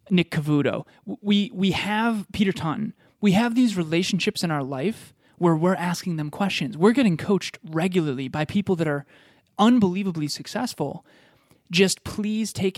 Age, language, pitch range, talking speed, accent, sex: 20-39, English, 150-185 Hz, 150 wpm, American, male